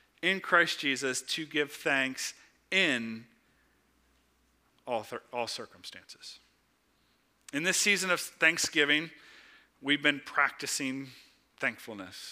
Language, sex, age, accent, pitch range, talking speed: English, male, 40-59, American, 135-180 Hz, 95 wpm